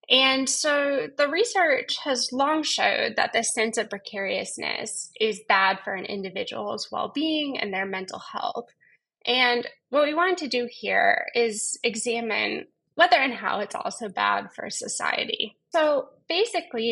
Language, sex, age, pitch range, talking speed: English, female, 10-29, 200-275 Hz, 145 wpm